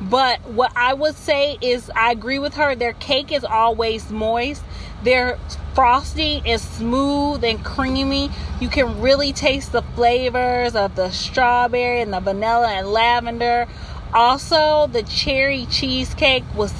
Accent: American